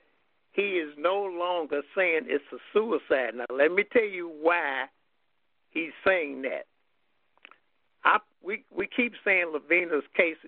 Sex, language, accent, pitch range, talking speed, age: male, English, American, 145-200 Hz, 135 wpm, 60-79